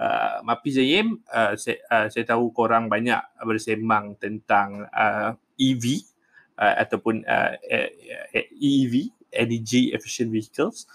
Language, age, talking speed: Malay, 20-39, 110 wpm